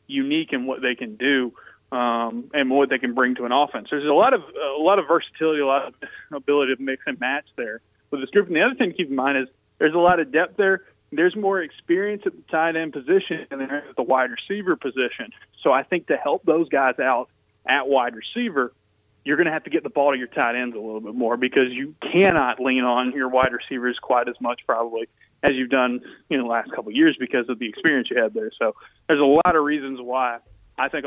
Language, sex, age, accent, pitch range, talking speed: English, male, 30-49, American, 125-145 Hz, 250 wpm